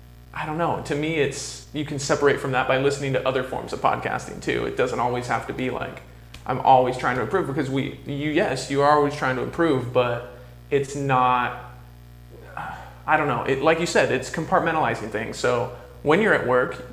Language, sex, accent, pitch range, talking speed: English, male, American, 120-145 Hz, 210 wpm